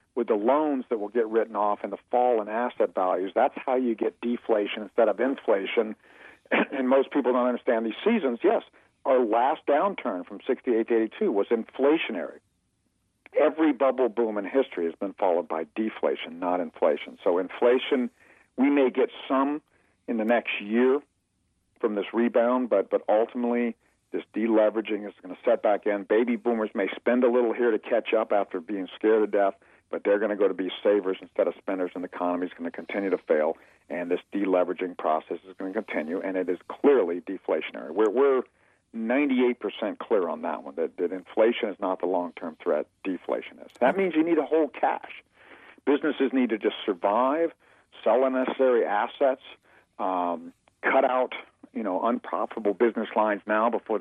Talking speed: 185 wpm